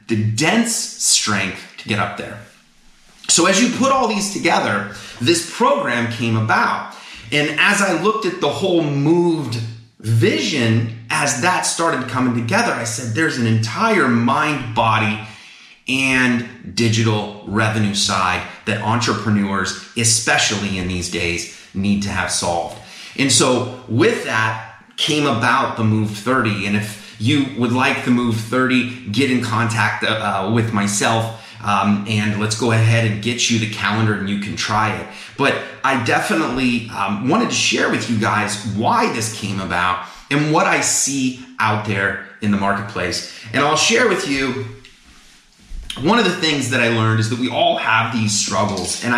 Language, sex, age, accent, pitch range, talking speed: English, male, 30-49, American, 105-130 Hz, 165 wpm